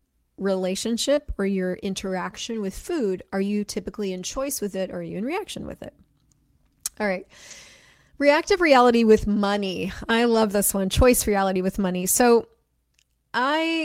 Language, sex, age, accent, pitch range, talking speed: English, female, 30-49, American, 185-230 Hz, 155 wpm